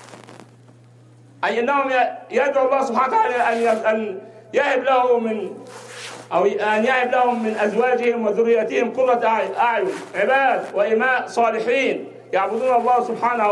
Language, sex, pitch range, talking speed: English, male, 205-255 Hz, 95 wpm